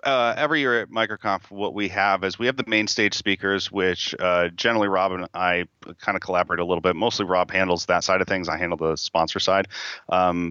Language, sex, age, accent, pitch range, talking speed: English, male, 30-49, American, 90-105 Hz, 230 wpm